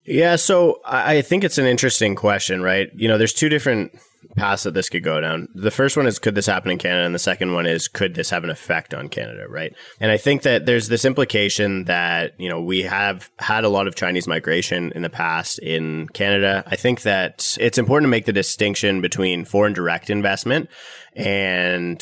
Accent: American